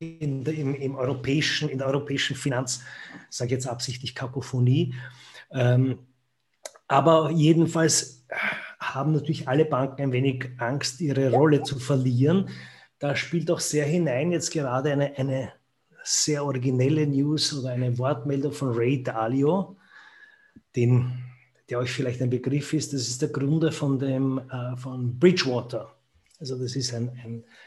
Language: German